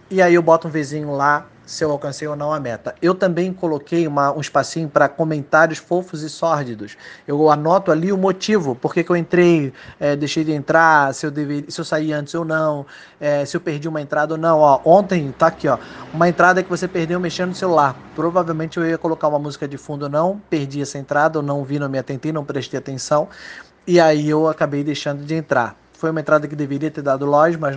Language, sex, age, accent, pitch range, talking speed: Portuguese, male, 20-39, Brazilian, 145-170 Hz, 230 wpm